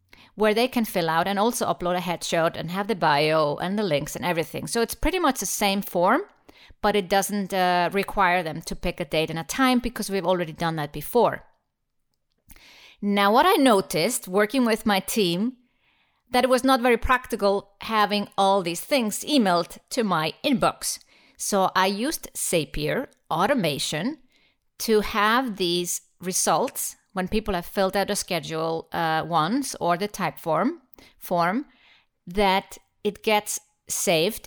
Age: 30-49